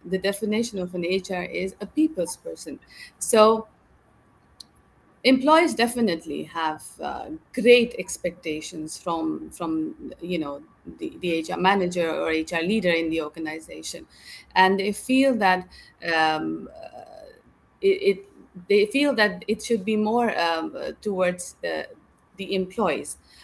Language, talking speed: English, 130 wpm